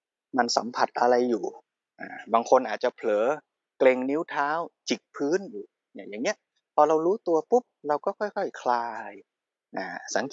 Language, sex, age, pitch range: Thai, male, 20-39, 135-215 Hz